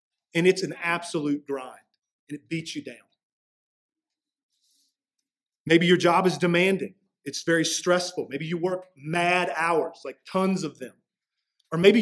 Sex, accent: male, American